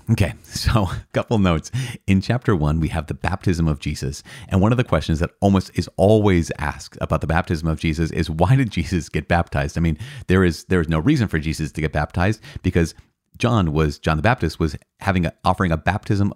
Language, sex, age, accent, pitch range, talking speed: English, male, 30-49, American, 80-105 Hz, 220 wpm